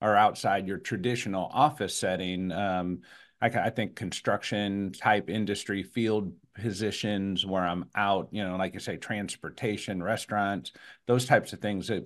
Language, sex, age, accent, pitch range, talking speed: English, male, 50-69, American, 105-135 Hz, 150 wpm